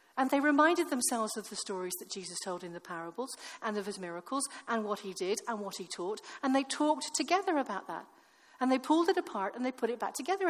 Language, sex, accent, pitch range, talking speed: English, female, British, 205-280 Hz, 240 wpm